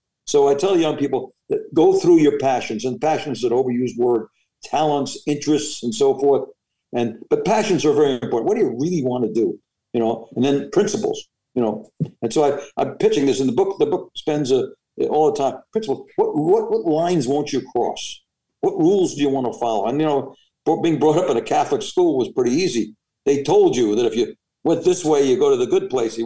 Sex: male